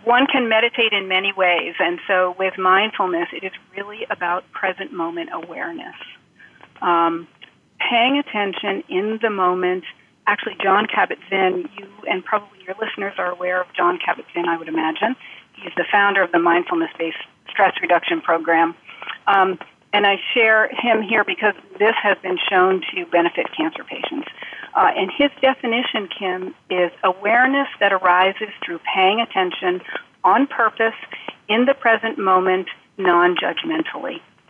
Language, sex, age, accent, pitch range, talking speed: English, female, 40-59, American, 180-235 Hz, 150 wpm